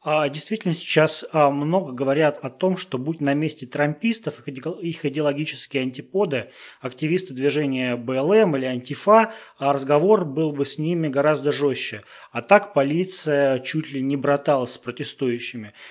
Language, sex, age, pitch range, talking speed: Russian, male, 30-49, 135-170 Hz, 130 wpm